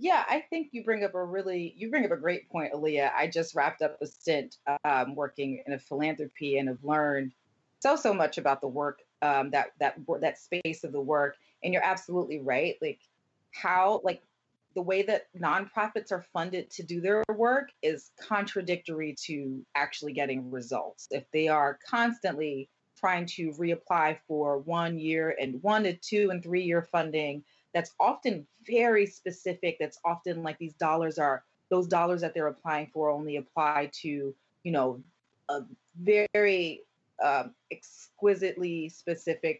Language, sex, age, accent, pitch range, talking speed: English, female, 30-49, American, 145-185 Hz, 165 wpm